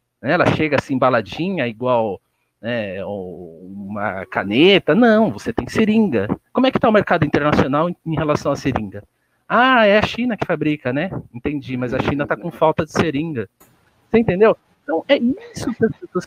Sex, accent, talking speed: male, Brazilian, 175 wpm